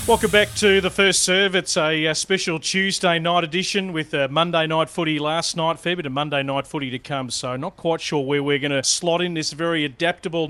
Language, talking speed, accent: English, 235 wpm, Australian